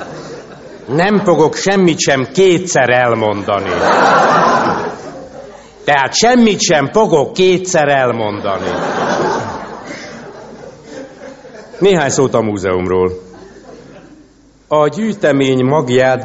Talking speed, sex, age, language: 70 wpm, male, 60-79, Hungarian